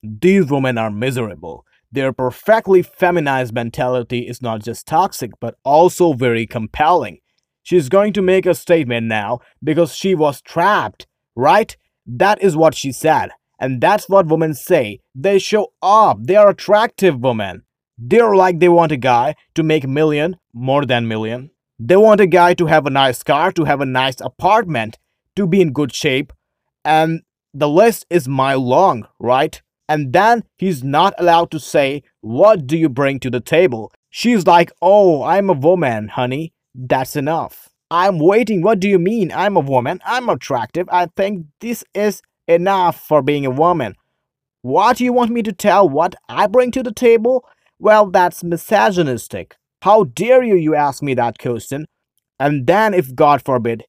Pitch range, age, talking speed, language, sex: 130-190 Hz, 30-49, 175 wpm, Urdu, male